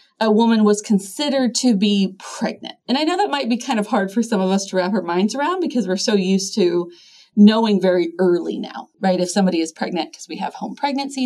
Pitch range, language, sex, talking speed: 195-255 Hz, English, female, 235 wpm